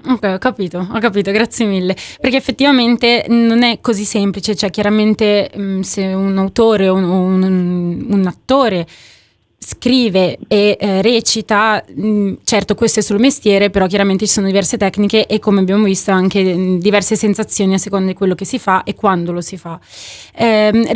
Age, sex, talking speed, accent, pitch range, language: 20-39, female, 165 wpm, native, 200-235 Hz, Italian